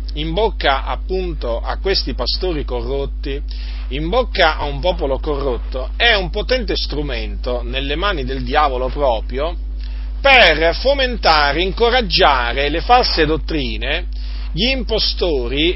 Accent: native